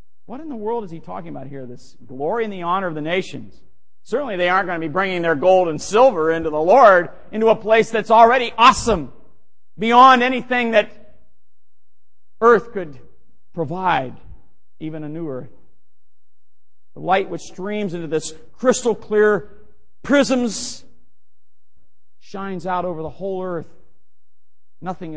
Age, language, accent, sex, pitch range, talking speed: 50-69, English, American, male, 160-240 Hz, 150 wpm